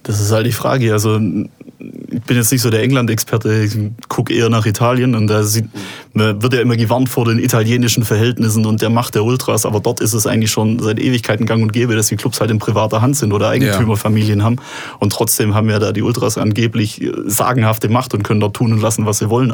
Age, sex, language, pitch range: 30-49, male, German, 105-120 Hz